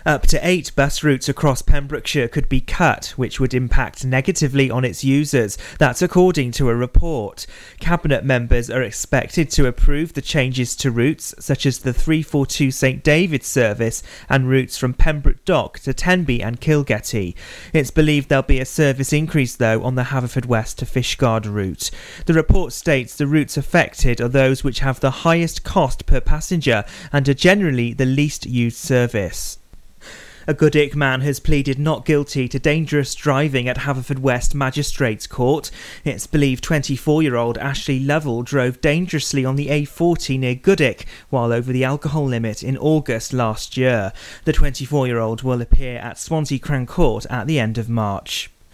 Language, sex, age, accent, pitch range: Japanese, male, 30-49, British, 125-150 Hz